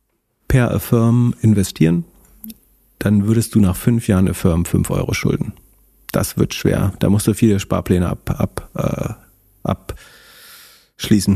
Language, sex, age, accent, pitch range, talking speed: German, male, 40-59, German, 95-115 Hz, 115 wpm